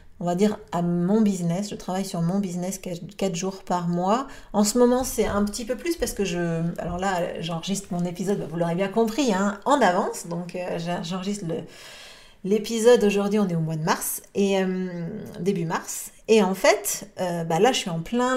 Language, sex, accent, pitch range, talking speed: French, female, French, 175-220 Hz, 205 wpm